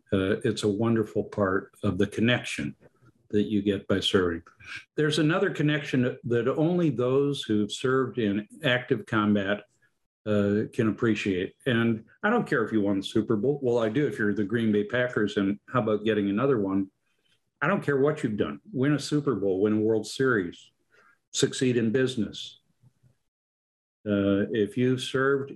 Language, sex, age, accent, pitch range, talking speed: English, male, 50-69, American, 100-125 Hz, 170 wpm